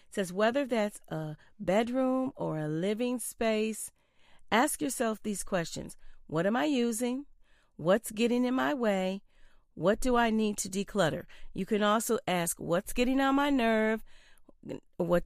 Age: 40-59